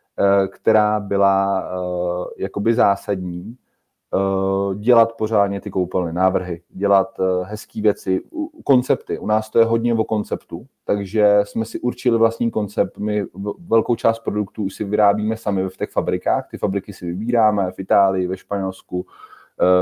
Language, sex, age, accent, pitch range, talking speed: Czech, male, 30-49, native, 95-115 Hz, 140 wpm